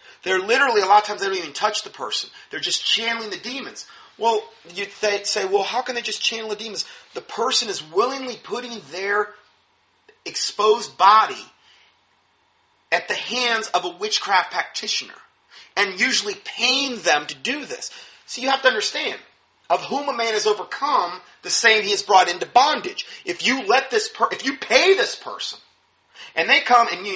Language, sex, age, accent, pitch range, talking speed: English, male, 30-49, American, 215-350 Hz, 185 wpm